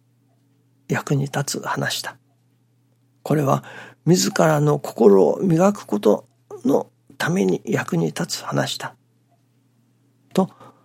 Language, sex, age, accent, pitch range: Japanese, male, 60-79, native, 130-145 Hz